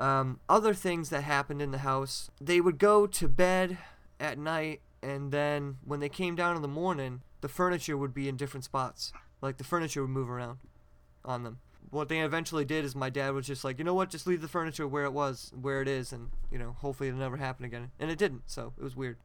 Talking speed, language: 240 wpm, English